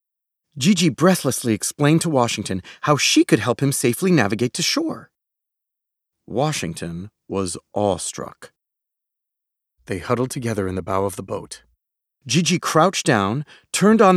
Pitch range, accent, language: 120-185 Hz, American, English